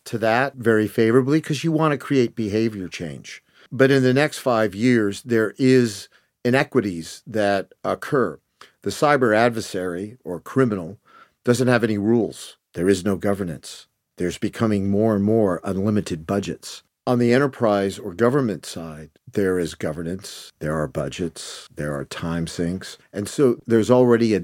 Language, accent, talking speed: English, American, 155 wpm